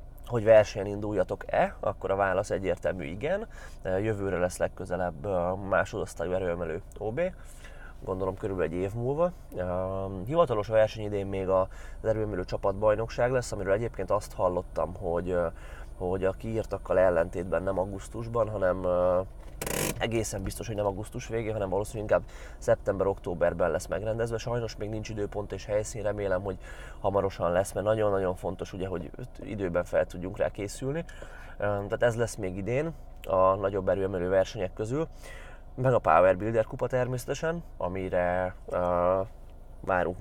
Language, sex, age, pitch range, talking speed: Hungarian, male, 20-39, 90-110 Hz, 130 wpm